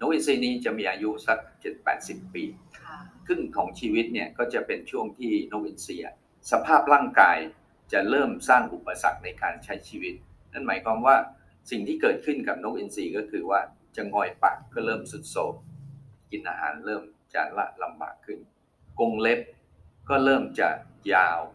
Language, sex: Thai, male